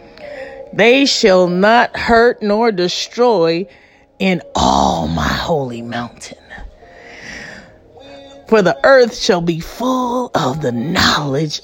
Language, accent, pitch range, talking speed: English, American, 175-275 Hz, 105 wpm